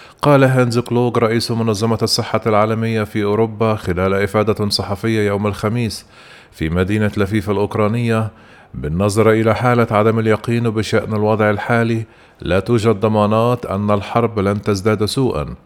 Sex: male